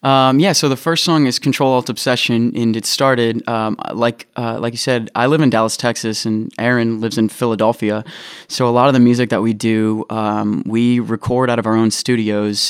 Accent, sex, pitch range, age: American, male, 110-120 Hz, 20-39